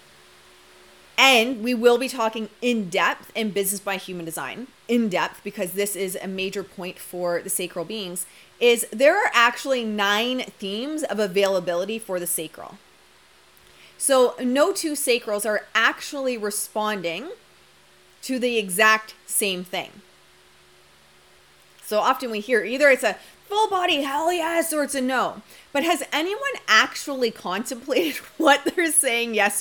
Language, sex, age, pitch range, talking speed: English, female, 30-49, 195-270 Hz, 145 wpm